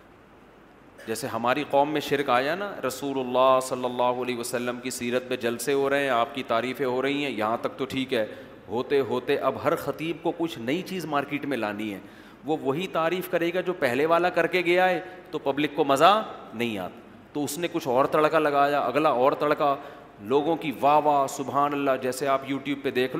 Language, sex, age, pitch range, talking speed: Urdu, male, 40-59, 130-170 Hz, 215 wpm